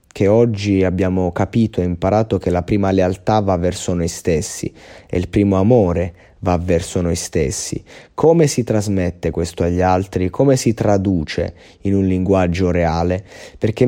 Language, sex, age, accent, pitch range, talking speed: Italian, male, 30-49, native, 85-105 Hz, 155 wpm